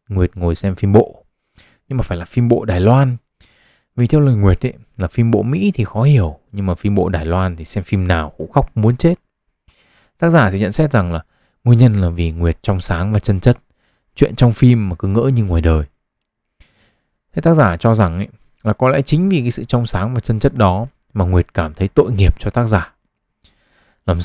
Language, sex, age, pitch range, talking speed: Vietnamese, male, 20-39, 90-120 Hz, 230 wpm